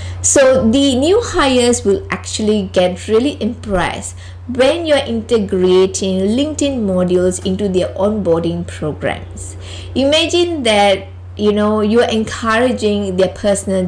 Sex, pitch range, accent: female, 170-245 Hz, Indian